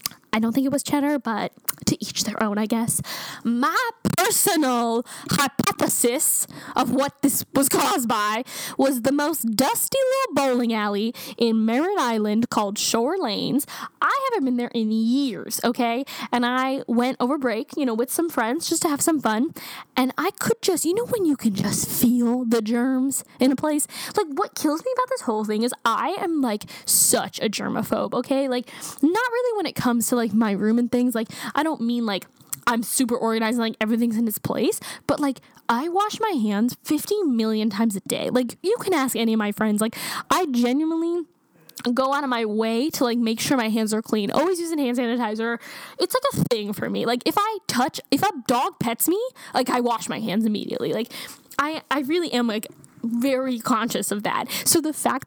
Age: 10-29